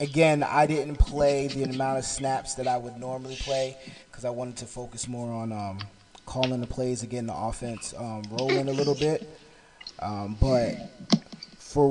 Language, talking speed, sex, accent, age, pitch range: English, 175 wpm, male, American, 20-39, 115-135 Hz